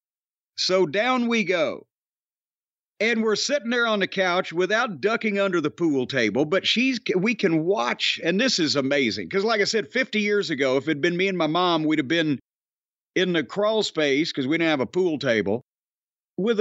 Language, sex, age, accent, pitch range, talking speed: English, male, 50-69, American, 165-210 Hz, 200 wpm